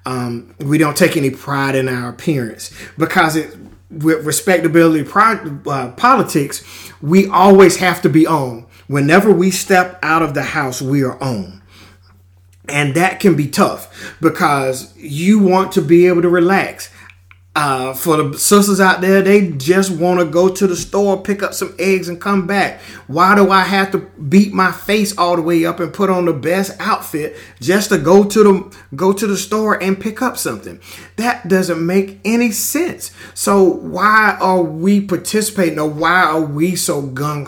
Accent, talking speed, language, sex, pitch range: American, 180 wpm, English, male, 130-185 Hz